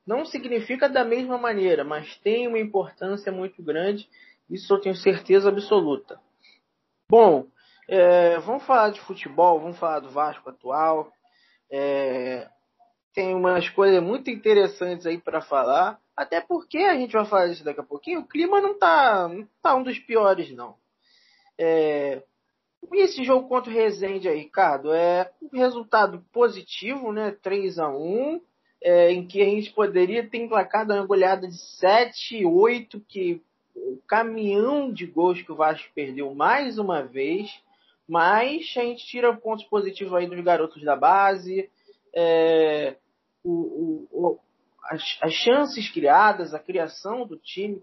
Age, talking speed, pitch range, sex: 20-39, 150 wpm, 170-240 Hz, male